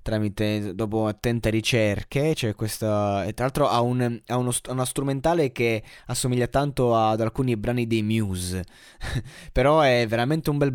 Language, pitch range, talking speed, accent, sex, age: Italian, 110-130 Hz, 160 wpm, native, male, 20-39